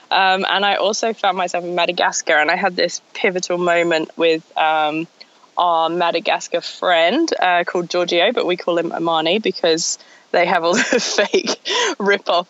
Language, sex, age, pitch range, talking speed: English, female, 20-39, 165-220 Hz, 165 wpm